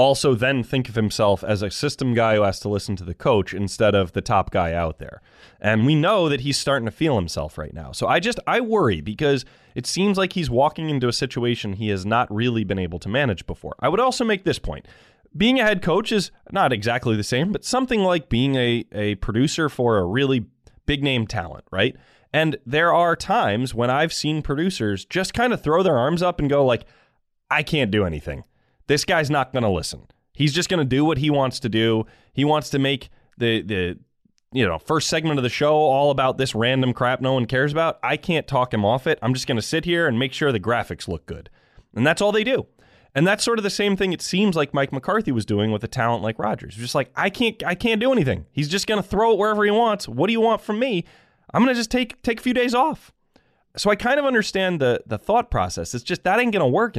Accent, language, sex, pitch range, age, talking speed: American, English, male, 115-175 Hz, 20-39, 250 wpm